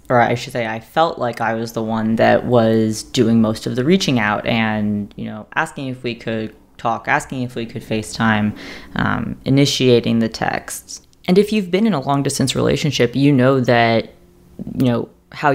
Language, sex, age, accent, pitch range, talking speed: English, female, 20-39, American, 115-140 Hz, 195 wpm